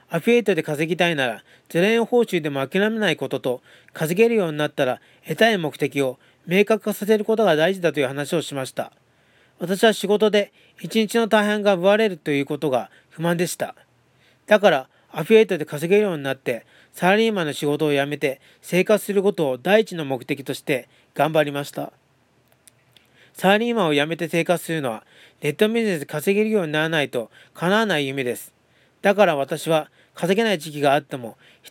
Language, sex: Japanese, male